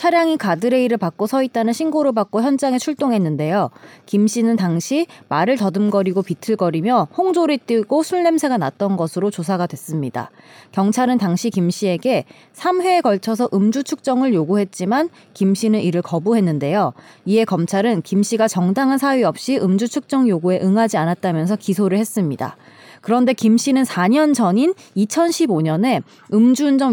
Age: 20-39